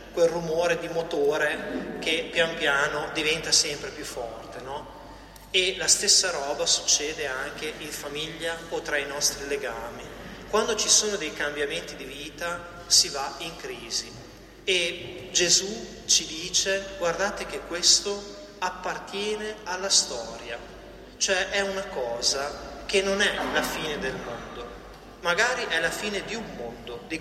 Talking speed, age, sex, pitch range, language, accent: 145 wpm, 30-49, male, 155-205 Hz, Italian, native